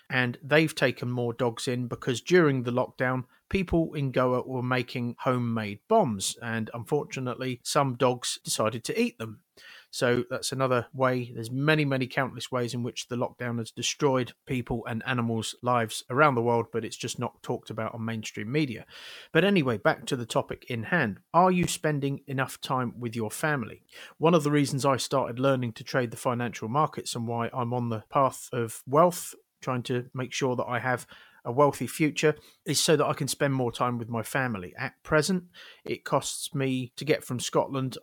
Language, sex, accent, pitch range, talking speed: English, male, British, 120-145 Hz, 190 wpm